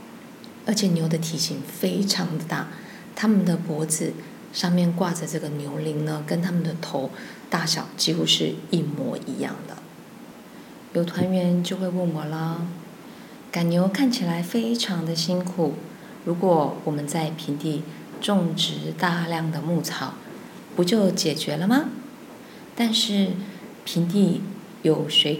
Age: 20-39